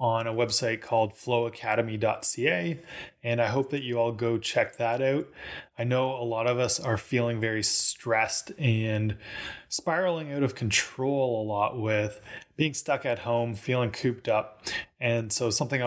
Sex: male